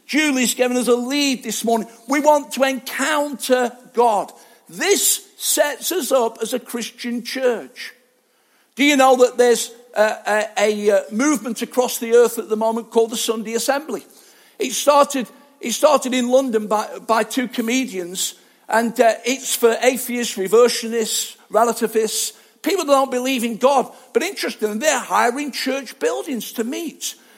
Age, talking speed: 50-69, 150 wpm